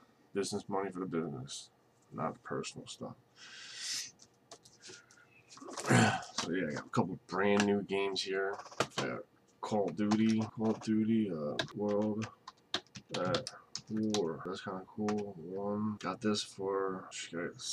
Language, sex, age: English, male, 20-39